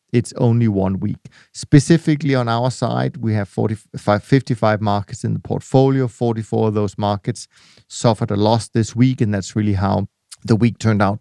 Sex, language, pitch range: male, English, 110-130 Hz